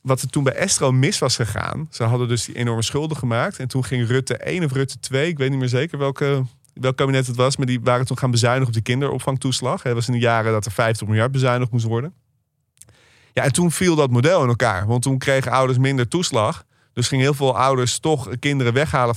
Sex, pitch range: male, 115-135 Hz